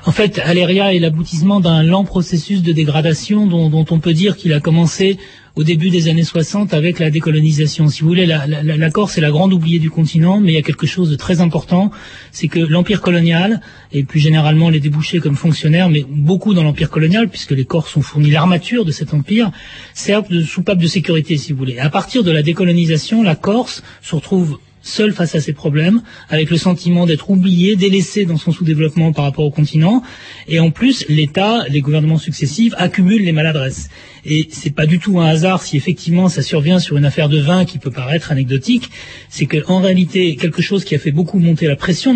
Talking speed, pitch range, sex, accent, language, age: 215 wpm, 155-185 Hz, male, French, French, 30-49